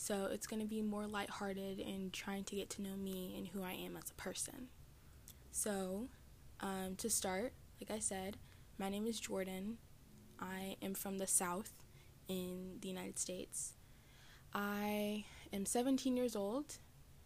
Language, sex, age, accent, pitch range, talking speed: English, female, 10-29, American, 185-210 Hz, 160 wpm